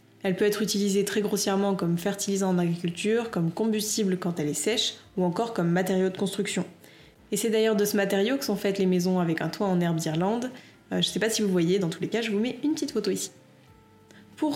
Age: 20-39